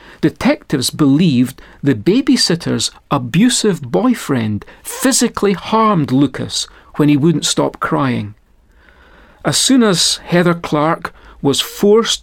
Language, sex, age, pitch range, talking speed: English, male, 40-59, 145-205 Hz, 105 wpm